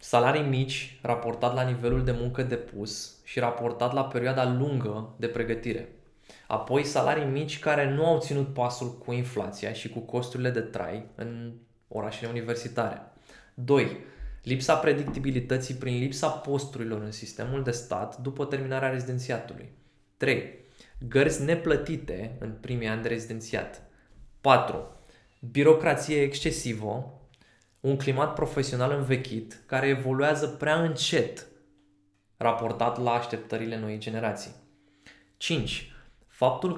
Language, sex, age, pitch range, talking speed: Romanian, male, 20-39, 115-140 Hz, 115 wpm